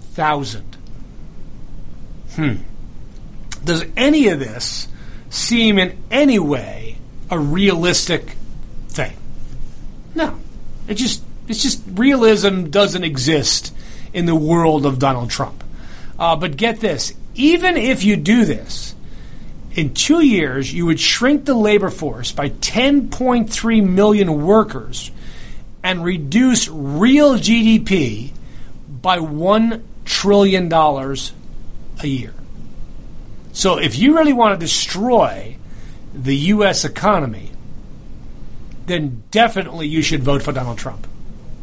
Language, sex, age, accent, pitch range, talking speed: English, male, 40-59, American, 135-210 Hz, 110 wpm